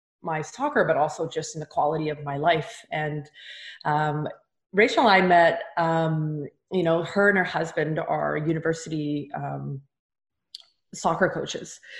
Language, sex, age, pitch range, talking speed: English, female, 30-49, 155-185 Hz, 145 wpm